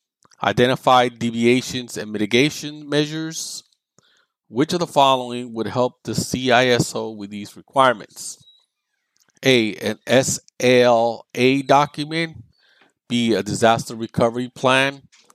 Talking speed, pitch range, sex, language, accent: 100 wpm, 115-150 Hz, male, English, American